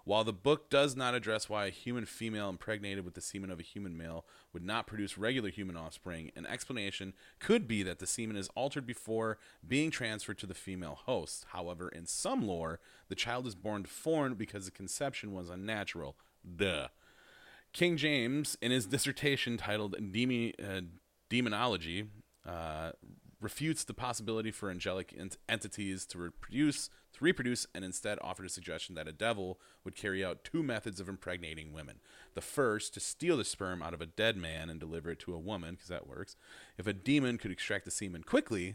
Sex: male